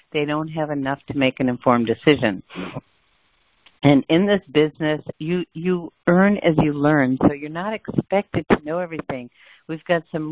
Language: English